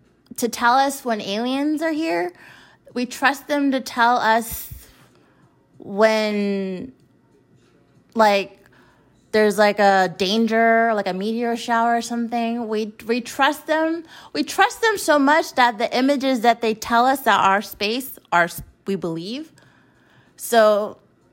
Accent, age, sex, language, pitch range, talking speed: American, 30-49, female, English, 205-250 Hz, 135 wpm